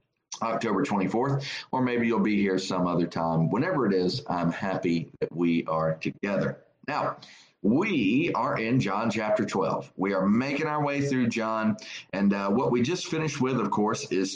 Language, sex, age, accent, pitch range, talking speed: English, male, 40-59, American, 95-140 Hz, 180 wpm